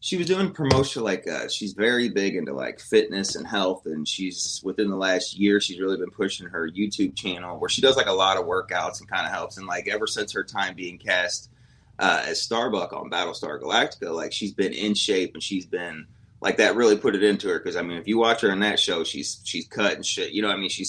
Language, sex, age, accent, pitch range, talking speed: English, male, 30-49, American, 95-140 Hz, 255 wpm